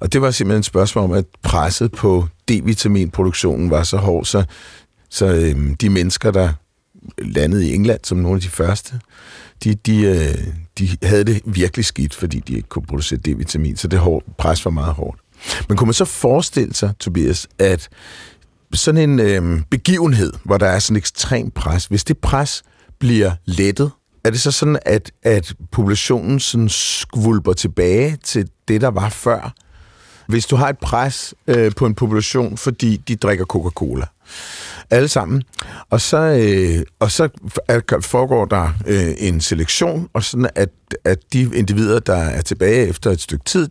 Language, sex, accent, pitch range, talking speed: Danish, male, native, 90-120 Hz, 160 wpm